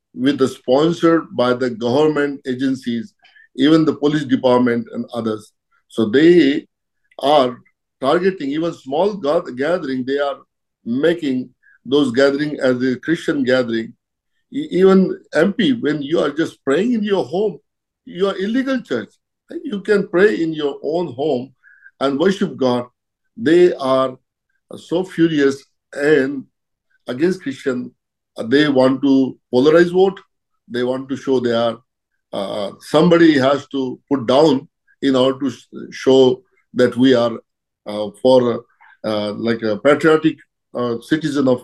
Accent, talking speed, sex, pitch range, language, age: Indian, 135 wpm, male, 125-170 Hz, English, 50-69